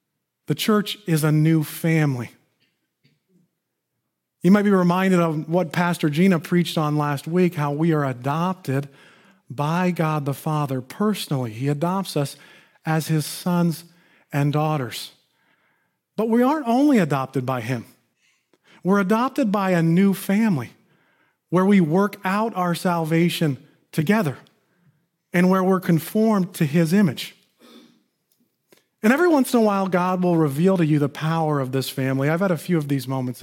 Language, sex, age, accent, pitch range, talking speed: English, male, 40-59, American, 145-185 Hz, 155 wpm